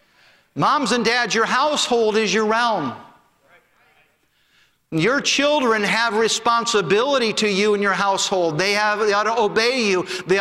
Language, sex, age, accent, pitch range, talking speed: English, male, 50-69, American, 200-235 Hz, 140 wpm